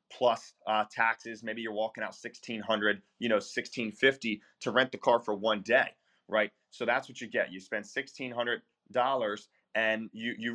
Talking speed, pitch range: 180 wpm, 105-115 Hz